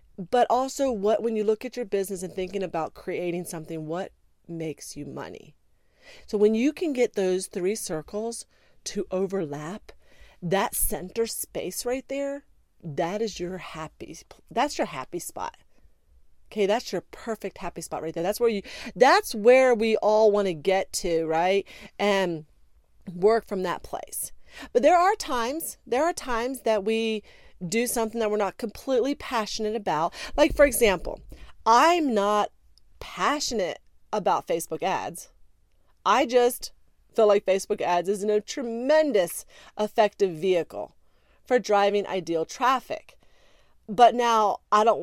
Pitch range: 185-245 Hz